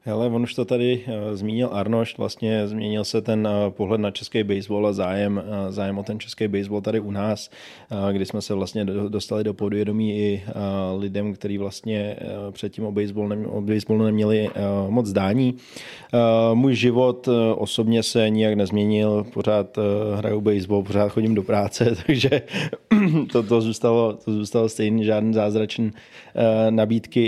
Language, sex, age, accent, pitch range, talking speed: Czech, male, 20-39, native, 105-115 Hz, 145 wpm